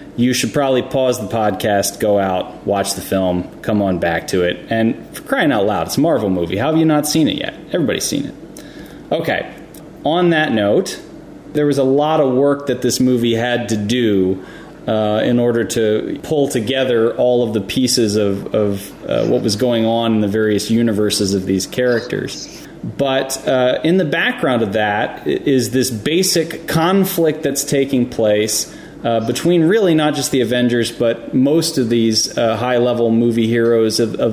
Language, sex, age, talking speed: English, male, 30-49, 185 wpm